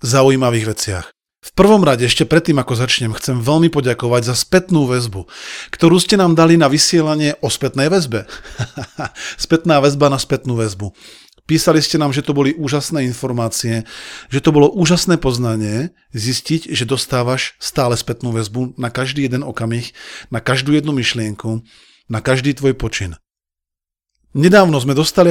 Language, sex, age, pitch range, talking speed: Slovak, male, 40-59, 120-155 Hz, 150 wpm